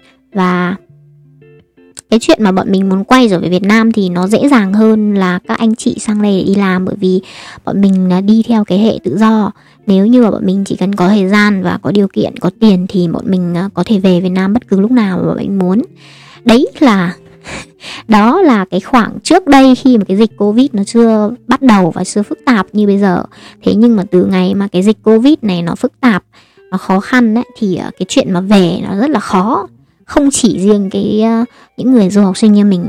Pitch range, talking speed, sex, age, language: 185-230 Hz, 235 wpm, male, 20-39, Vietnamese